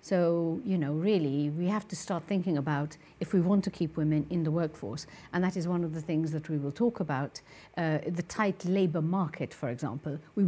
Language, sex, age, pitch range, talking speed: English, female, 50-69, 155-190 Hz, 225 wpm